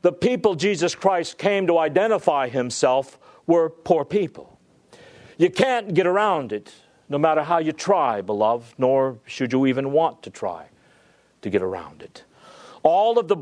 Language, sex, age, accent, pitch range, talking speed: English, male, 50-69, American, 175-220 Hz, 160 wpm